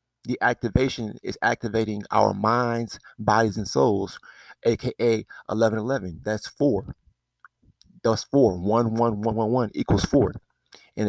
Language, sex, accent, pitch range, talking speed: English, male, American, 100-115 Hz, 125 wpm